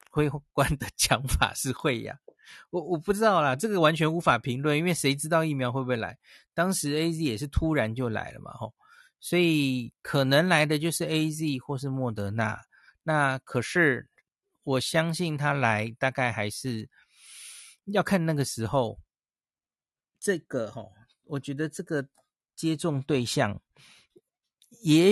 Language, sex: Chinese, male